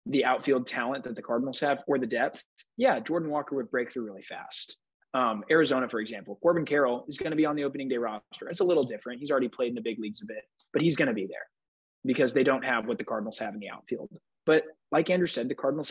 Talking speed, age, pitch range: 260 wpm, 20-39, 120-160 Hz